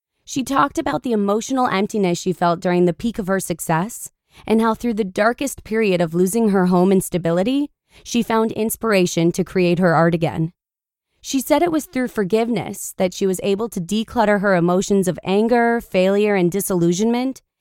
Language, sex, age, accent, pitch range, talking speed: English, female, 20-39, American, 180-240 Hz, 180 wpm